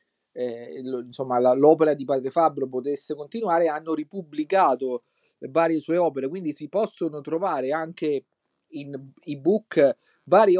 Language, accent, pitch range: Italian, native, 130-155 Hz